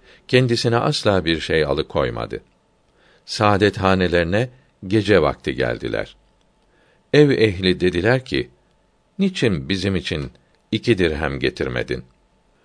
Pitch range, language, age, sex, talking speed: 85-110 Hz, Turkish, 60-79, male, 100 wpm